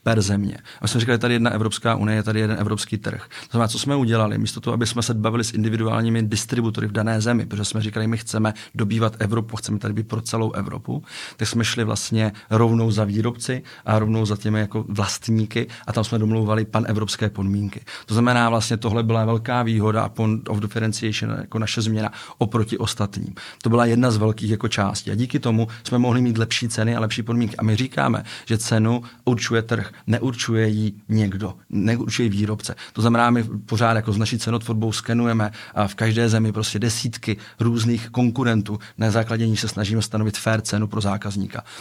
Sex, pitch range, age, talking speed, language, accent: male, 110-120 Hz, 40-59, 195 wpm, Czech, native